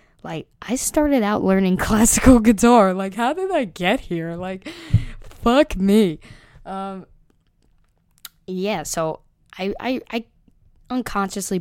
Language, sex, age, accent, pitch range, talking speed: English, female, 10-29, American, 160-190 Hz, 120 wpm